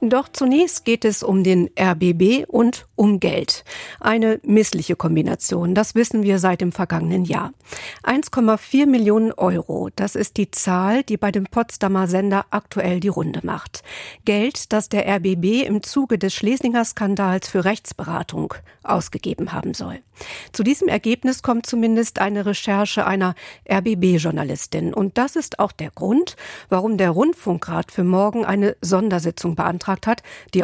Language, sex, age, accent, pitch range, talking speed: German, female, 50-69, German, 185-225 Hz, 145 wpm